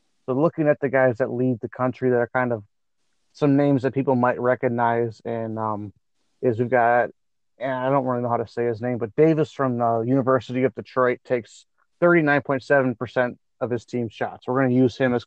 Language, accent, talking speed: English, American, 210 wpm